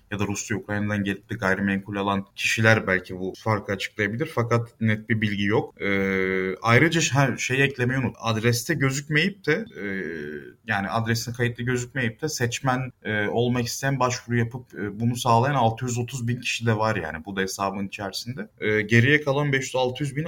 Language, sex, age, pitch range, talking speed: Turkish, male, 30-49, 105-125 Hz, 160 wpm